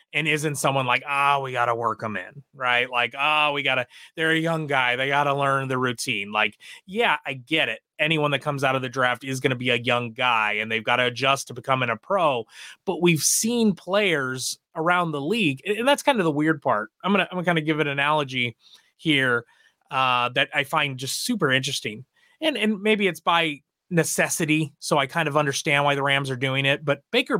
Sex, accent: male, American